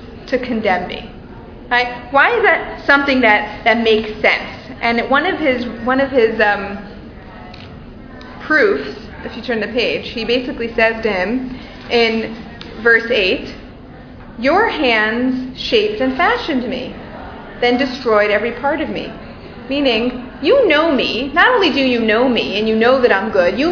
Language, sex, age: English, female, 30-49